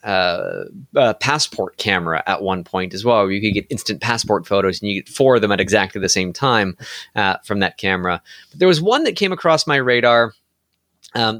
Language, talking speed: English, 215 wpm